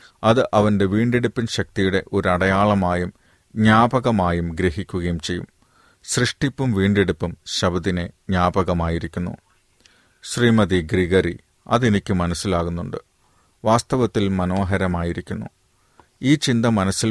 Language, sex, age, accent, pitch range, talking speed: Malayalam, male, 40-59, native, 90-110 Hz, 75 wpm